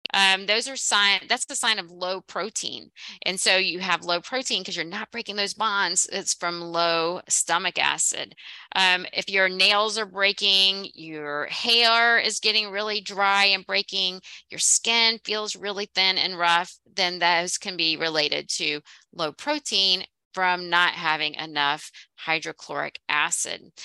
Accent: American